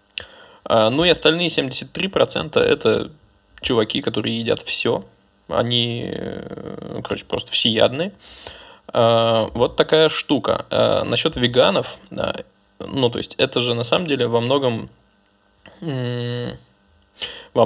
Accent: native